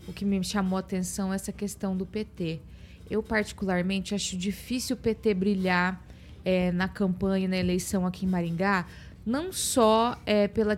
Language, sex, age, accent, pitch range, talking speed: Portuguese, female, 20-39, Brazilian, 190-240 Hz, 155 wpm